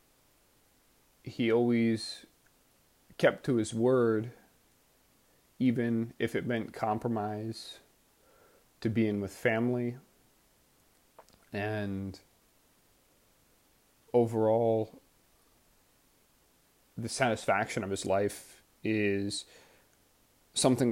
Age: 30-49